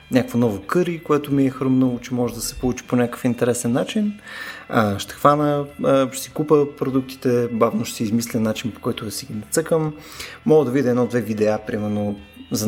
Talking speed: 185 wpm